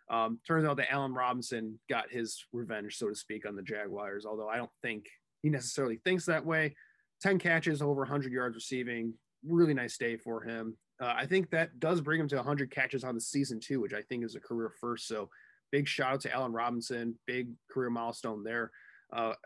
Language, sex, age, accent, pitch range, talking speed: English, male, 20-39, American, 115-145 Hz, 205 wpm